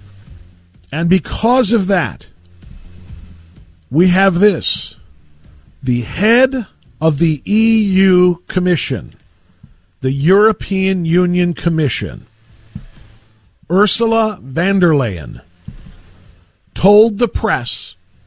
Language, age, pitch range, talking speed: English, 50-69, 120-185 Hz, 80 wpm